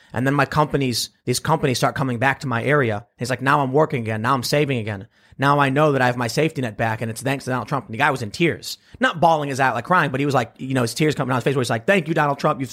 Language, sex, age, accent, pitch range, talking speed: English, male, 30-49, American, 120-155 Hz, 330 wpm